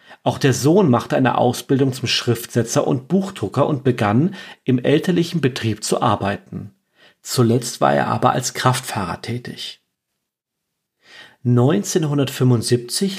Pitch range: 120-140 Hz